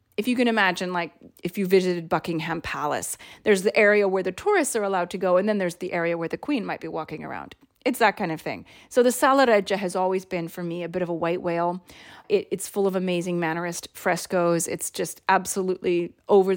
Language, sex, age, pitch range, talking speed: English, female, 30-49, 175-210 Hz, 220 wpm